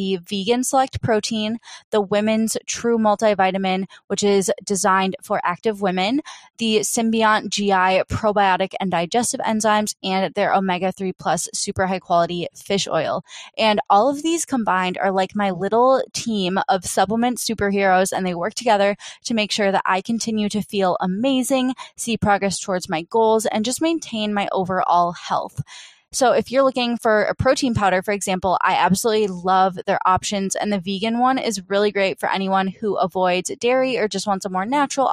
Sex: female